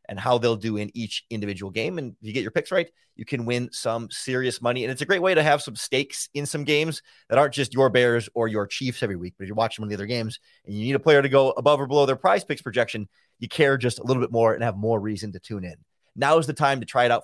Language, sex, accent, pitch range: English, male, American, 110-150 Hz